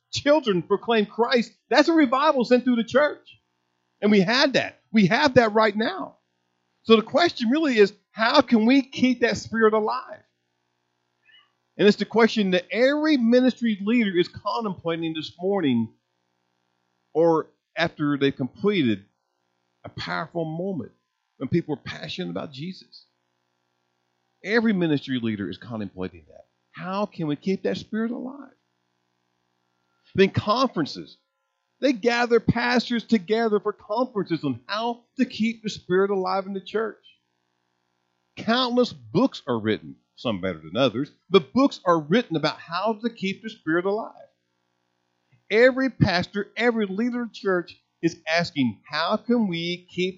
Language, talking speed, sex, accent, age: English, 140 wpm, male, American, 50-69